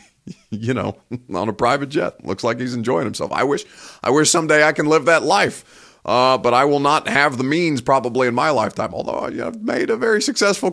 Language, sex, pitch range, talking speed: English, male, 120-160 Hz, 220 wpm